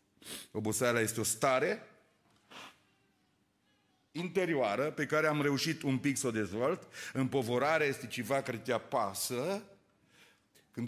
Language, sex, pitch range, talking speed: Romanian, male, 110-150 Hz, 115 wpm